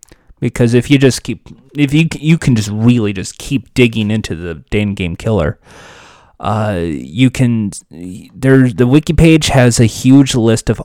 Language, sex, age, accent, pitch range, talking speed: English, male, 30-49, American, 100-125 Hz, 170 wpm